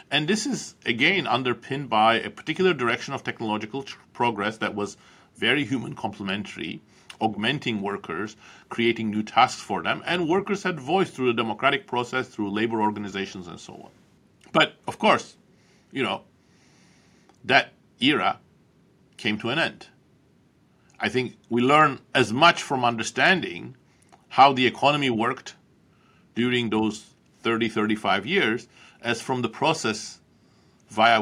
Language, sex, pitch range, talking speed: English, male, 110-135 Hz, 135 wpm